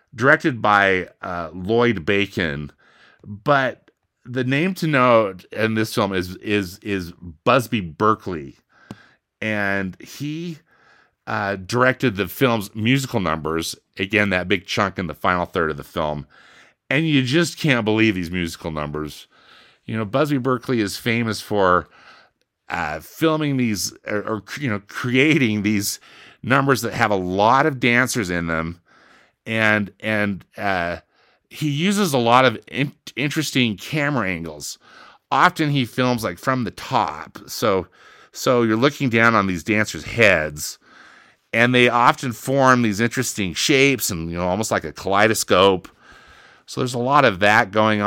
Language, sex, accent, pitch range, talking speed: English, male, American, 95-130 Hz, 150 wpm